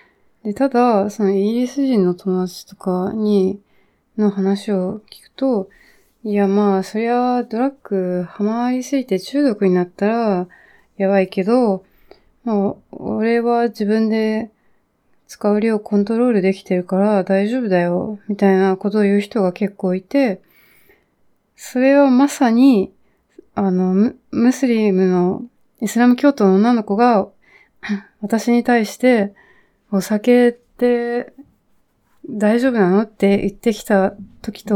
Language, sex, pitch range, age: Japanese, female, 200-245 Hz, 20-39